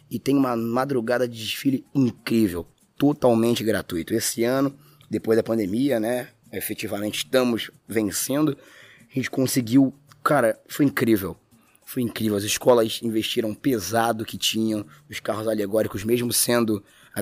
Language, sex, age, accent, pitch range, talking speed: Portuguese, male, 20-39, Brazilian, 110-130 Hz, 130 wpm